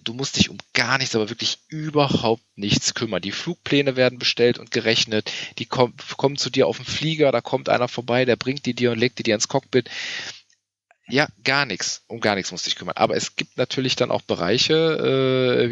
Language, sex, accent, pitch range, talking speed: German, male, German, 105-130 Hz, 215 wpm